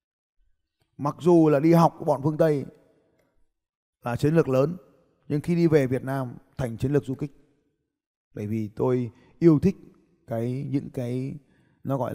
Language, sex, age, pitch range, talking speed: Vietnamese, male, 20-39, 125-170 Hz, 170 wpm